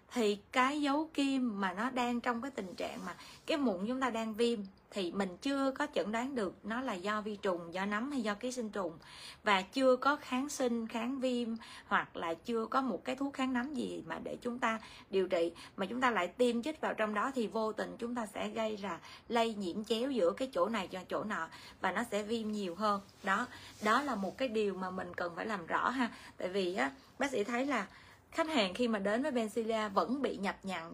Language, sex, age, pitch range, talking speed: Vietnamese, female, 20-39, 200-255 Hz, 240 wpm